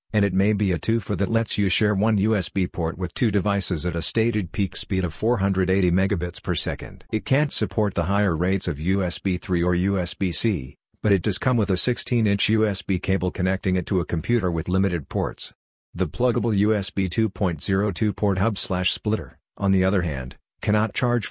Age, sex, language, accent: 50-69, male, English, American